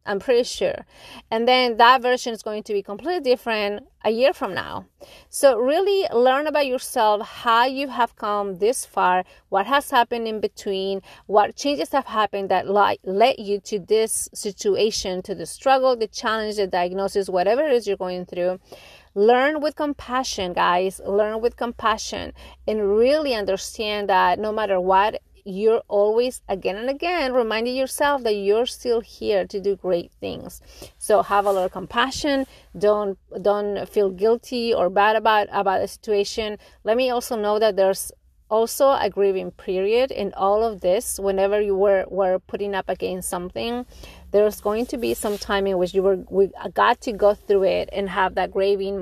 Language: English